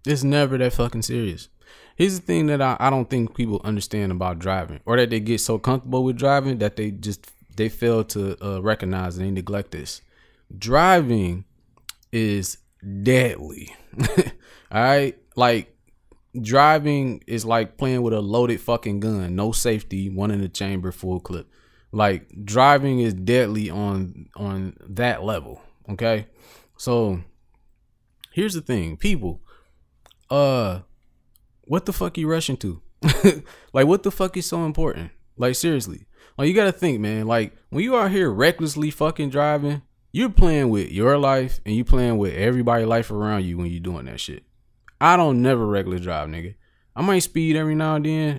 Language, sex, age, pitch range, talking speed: English, male, 20-39, 100-140 Hz, 165 wpm